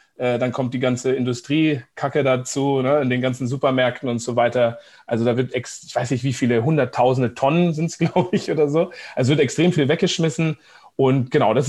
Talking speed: 200 wpm